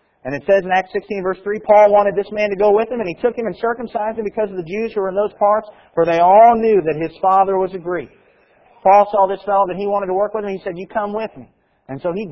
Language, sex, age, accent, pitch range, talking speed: English, male, 40-59, American, 150-205 Hz, 305 wpm